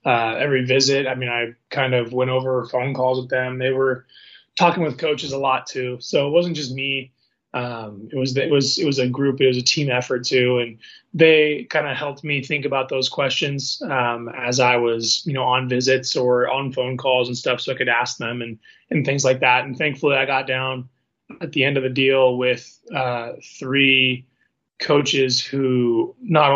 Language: English